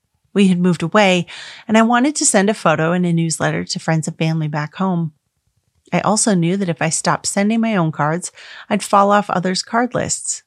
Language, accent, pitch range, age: English, American, 160-210 Hz, 30-49